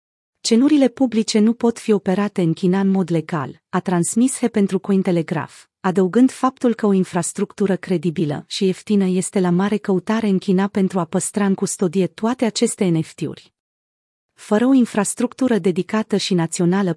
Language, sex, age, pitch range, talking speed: Romanian, female, 30-49, 180-220 Hz, 155 wpm